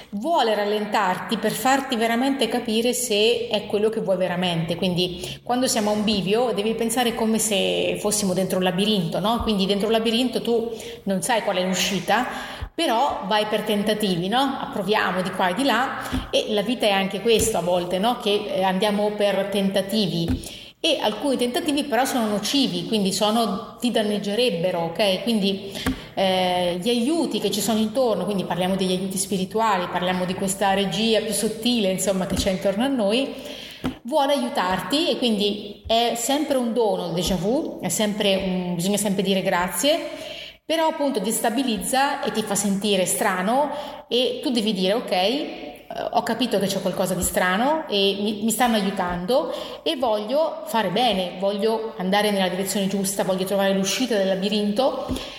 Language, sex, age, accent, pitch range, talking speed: Italian, female, 30-49, native, 195-240 Hz, 160 wpm